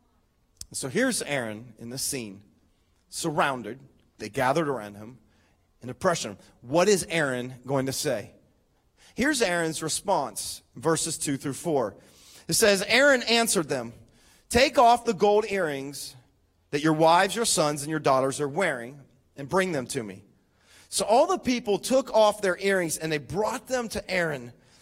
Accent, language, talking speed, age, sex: American, English, 155 wpm, 40-59, male